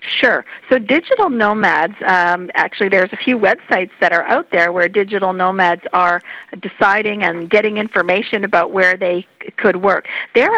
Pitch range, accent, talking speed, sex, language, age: 175-215 Hz, American, 165 wpm, female, English, 50-69